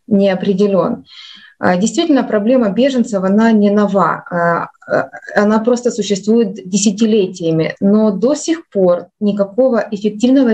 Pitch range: 190-230 Hz